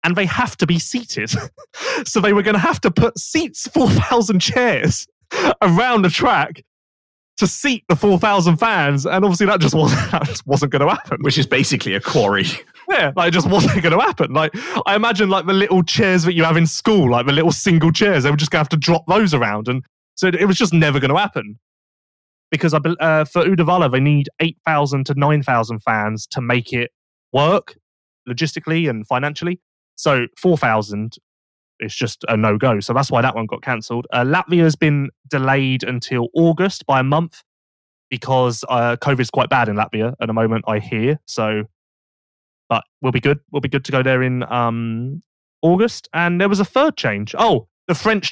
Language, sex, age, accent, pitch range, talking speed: English, male, 20-39, British, 120-170 Hz, 195 wpm